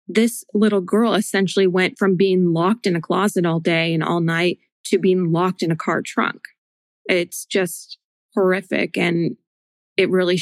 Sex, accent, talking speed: female, American, 165 wpm